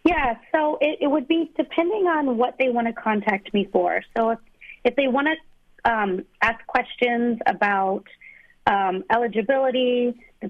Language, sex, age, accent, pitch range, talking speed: English, female, 40-59, American, 205-250 Hz, 160 wpm